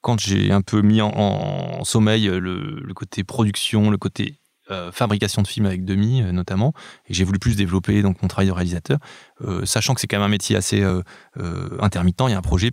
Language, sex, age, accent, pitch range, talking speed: French, male, 20-39, French, 95-115 Hz, 235 wpm